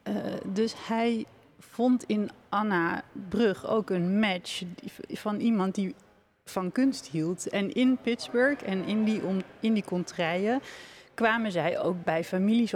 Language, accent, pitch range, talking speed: Dutch, Dutch, 175-220 Hz, 135 wpm